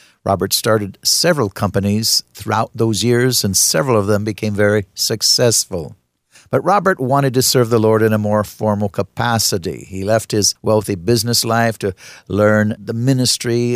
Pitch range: 105-120 Hz